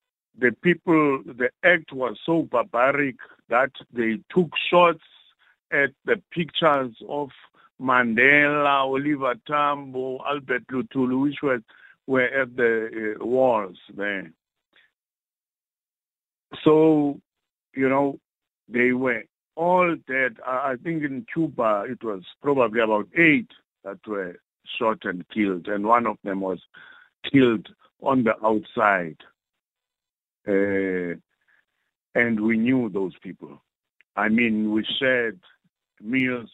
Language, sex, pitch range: English, male, 115-150 Hz